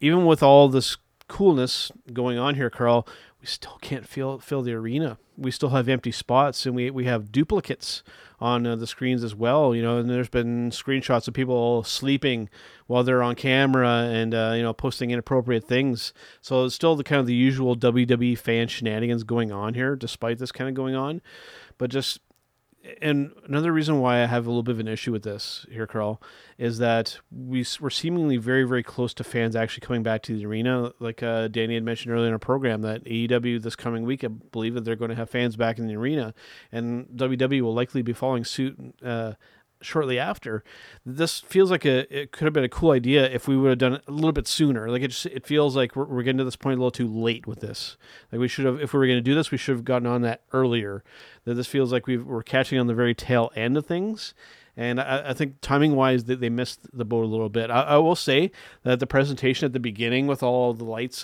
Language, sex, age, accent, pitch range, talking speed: English, male, 30-49, American, 115-135 Hz, 235 wpm